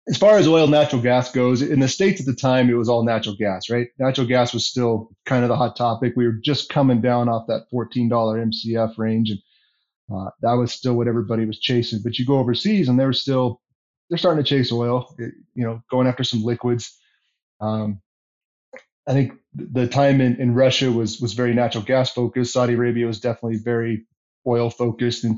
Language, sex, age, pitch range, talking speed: English, male, 20-39, 115-130 Hz, 210 wpm